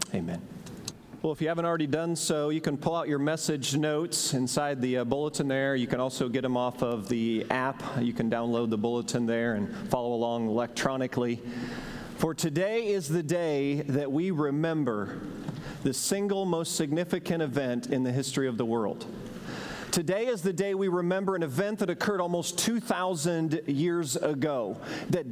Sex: male